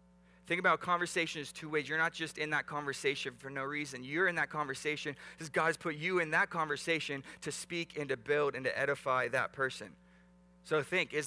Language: English